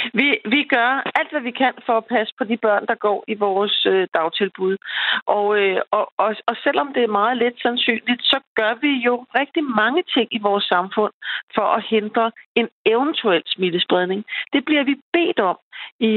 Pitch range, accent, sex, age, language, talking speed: 205-245 Hz, native, female, 40-59, Danish, 180 wpm